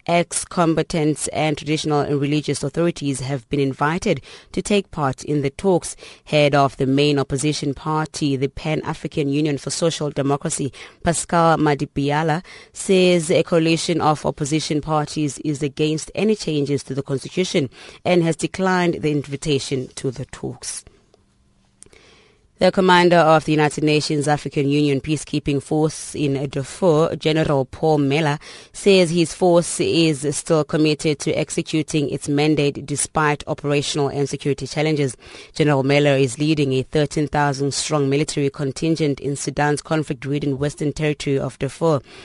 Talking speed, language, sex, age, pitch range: 135 wpm, English, female, 20-39, 140-160 Hz